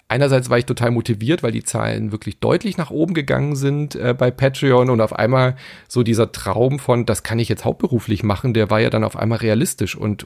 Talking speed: 220 wpm